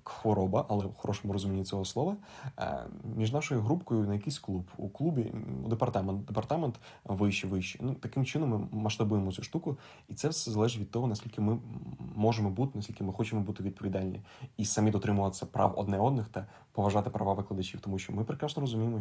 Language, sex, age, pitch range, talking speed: Ukrainian, male, 20-39, 100-115 Hz, 175 wpm